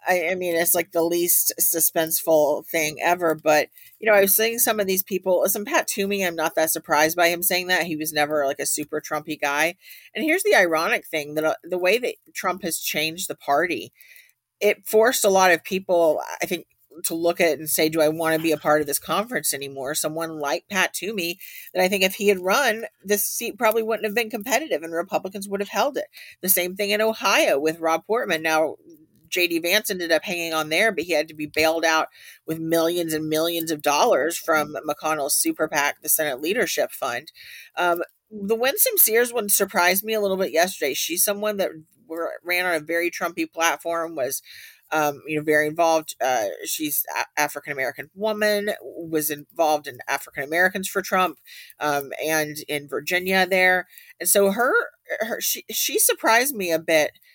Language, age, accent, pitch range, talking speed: English, 40-59, American, 155-205 Hz, 200 wpm